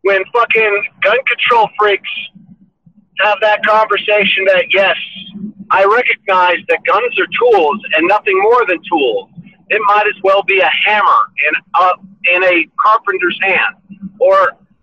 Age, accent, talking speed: 50-69, American, 140 wpm